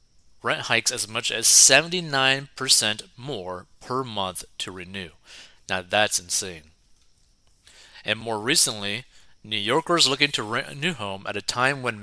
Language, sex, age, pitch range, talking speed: English, male, 30-49, 100-135 Hz, 145 wpm